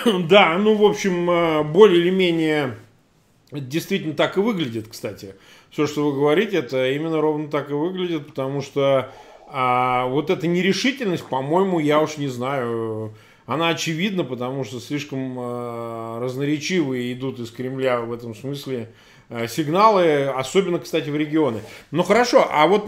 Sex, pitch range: male, 135-185 Hz